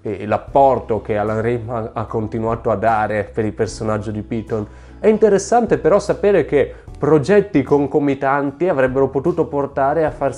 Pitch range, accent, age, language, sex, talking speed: 120-160 Hz, native, 20-39, Italian, male, 145 wpm